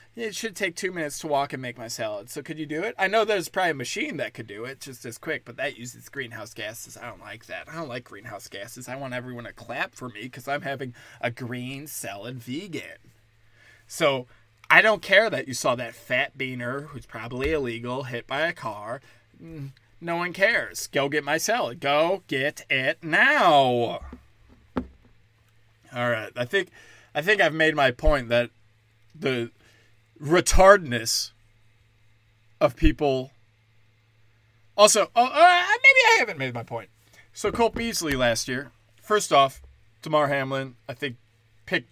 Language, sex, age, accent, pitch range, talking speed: English, male, 20-39, American, 115-150 Hz, 170 wpm